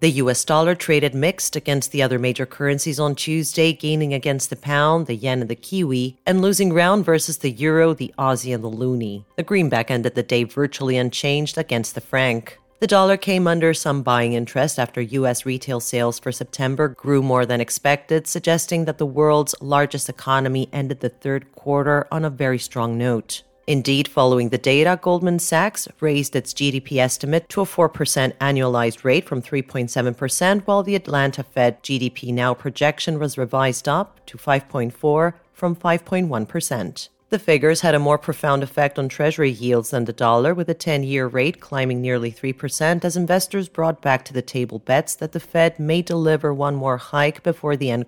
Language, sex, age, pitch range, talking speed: English, female, 40-59, 125-160 Hz, 180 wpm